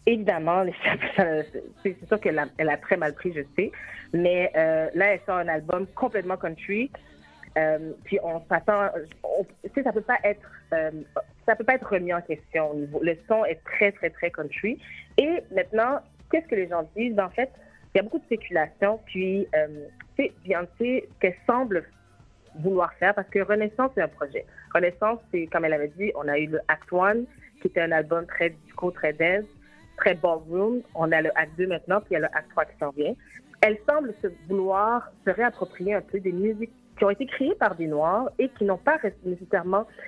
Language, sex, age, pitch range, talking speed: French, female, 30-49, 170-220 Hz, 200 wpm